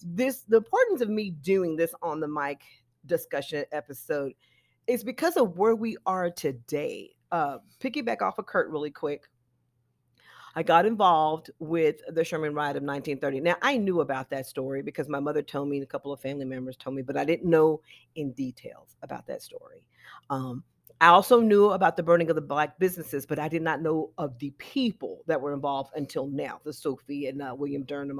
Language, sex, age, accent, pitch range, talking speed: English, female, 40-59, American, 140-195 Hz, 200 wpm